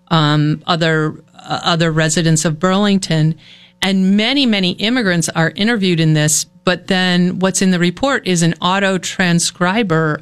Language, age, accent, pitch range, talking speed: English, 50-69, American, 170-205 Hz, 145 wpm